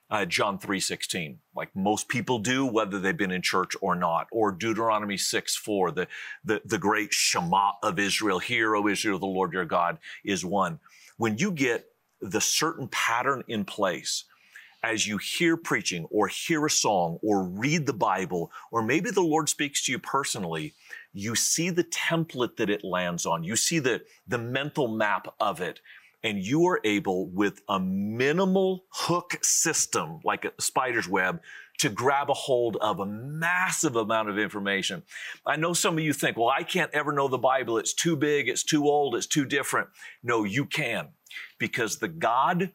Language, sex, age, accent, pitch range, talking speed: English, male, 40-59, American, 105-155 Hz, 180 wpm